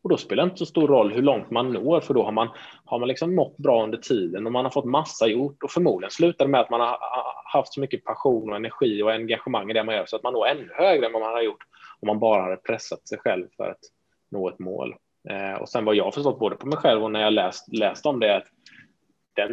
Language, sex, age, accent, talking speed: Swedish, male, 20-39, Norwegian, 285 wpm